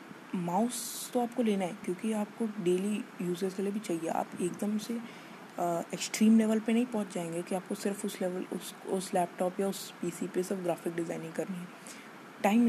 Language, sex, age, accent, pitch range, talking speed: Hindi, female, 20-39, native, 175-220 Hz, 190 wpm